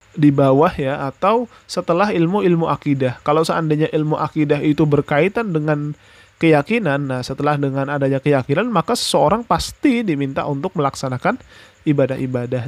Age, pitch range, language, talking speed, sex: 20-39, 130-150 Hz, Indonesian, 130 wpm, male